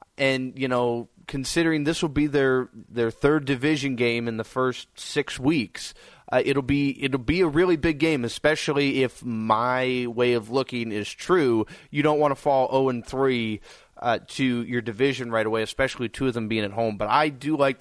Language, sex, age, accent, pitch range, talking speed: English, male, 20-39, American, 120-150 Hz, 195 wpm